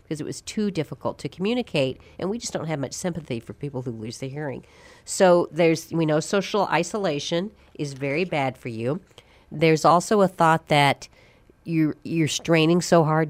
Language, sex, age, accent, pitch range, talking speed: English, female, 40-59, American, 130-170 Hz, 180 wpm